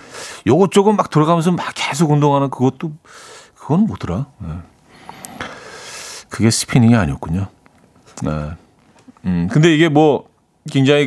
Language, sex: Korean, male